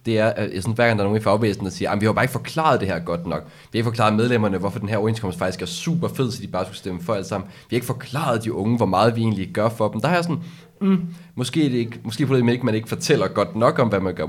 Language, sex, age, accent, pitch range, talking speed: Danish, male, 20-39, native, 95-120 Hz, 320 wpm